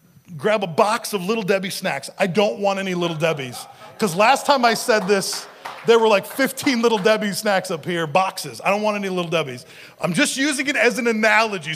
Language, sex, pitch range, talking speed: English, male, 175-235 Hz, 215 wpm